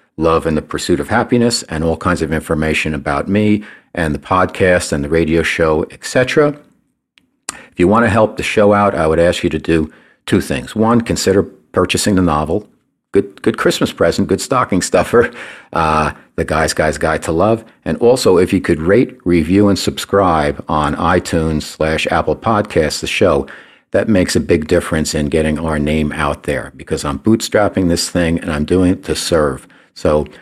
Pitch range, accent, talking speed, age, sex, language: 80-95 Hz, American, 185 wpm, 50-69, male, English